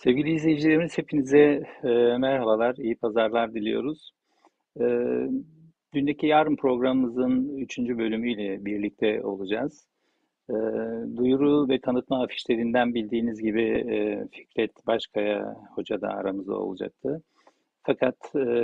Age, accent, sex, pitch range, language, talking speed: 50-69, native, male, 110-135 Hz, Turkish, 85 wpm